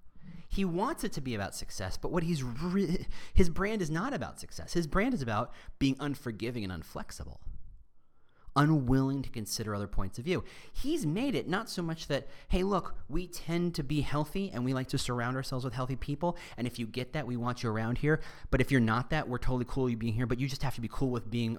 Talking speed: 240 wpm